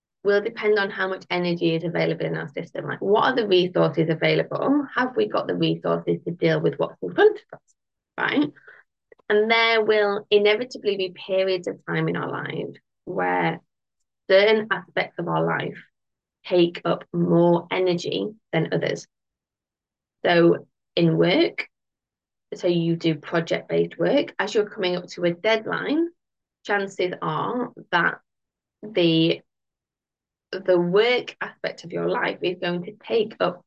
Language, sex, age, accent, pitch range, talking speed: English, female, 20-39, British, 165-215 Hz, 150 wpm